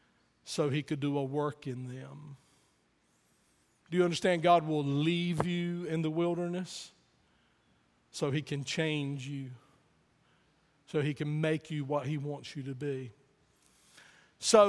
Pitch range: 160-220 Hz